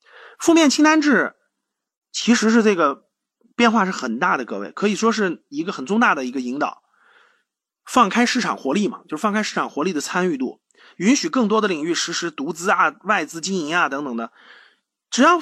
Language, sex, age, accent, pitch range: Chinese, male, 30-49, native, 175-250 Hz